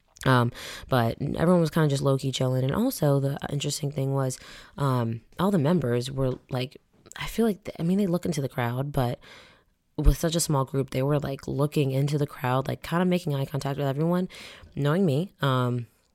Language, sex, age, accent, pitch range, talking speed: English, female, 20-39, American, 130-155 Hz, 205 wpm